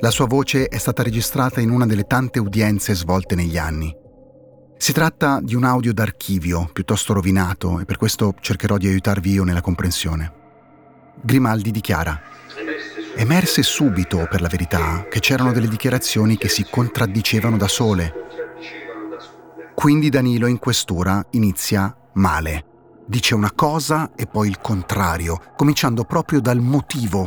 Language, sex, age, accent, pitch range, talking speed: Italian, male, 30-49, native, 95-135 Hz, 140 wpm